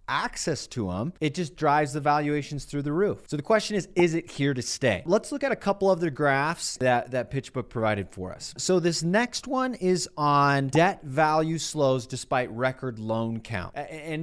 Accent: American